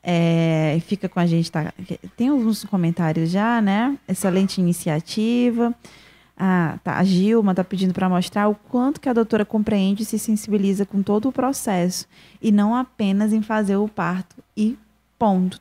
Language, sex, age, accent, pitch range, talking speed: Portuguese, female, 20-39, Brazilian, 190-235 Hz, 165 wpm